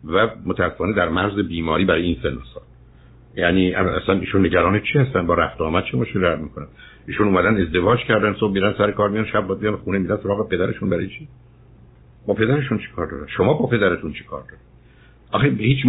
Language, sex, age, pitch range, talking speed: Persian, male, 60-79, 110-145 Hz, 190 wpm